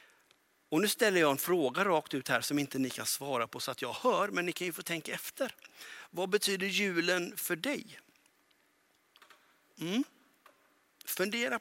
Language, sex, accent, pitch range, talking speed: Swedish, male, native, 135-200 Hz, 165 wpm